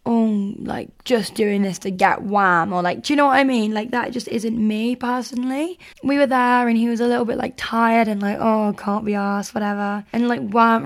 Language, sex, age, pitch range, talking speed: English, female, 10-29, 205-240 Hz, 240 wpm